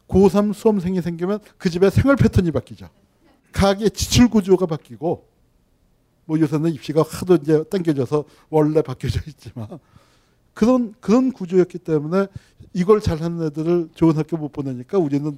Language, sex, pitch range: Korean, male, 130-185 Hz